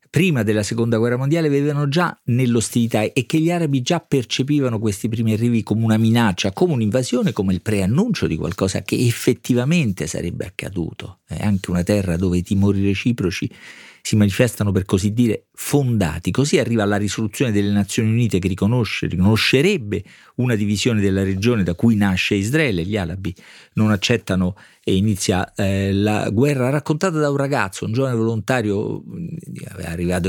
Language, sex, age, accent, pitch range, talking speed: Italian, male, 40-59, native, 95-120 Hz, 160 wpm